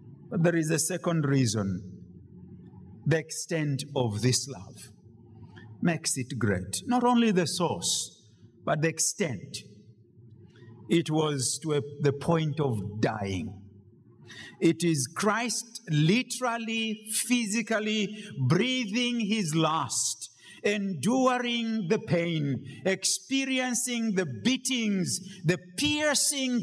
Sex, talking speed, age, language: male, 100 wpm, 50-69, English